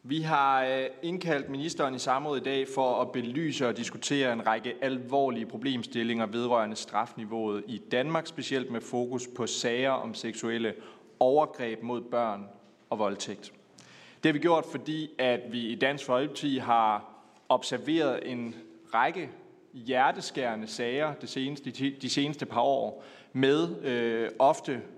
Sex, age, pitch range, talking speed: male, 30-49, 115-140 Hz, 130 wpm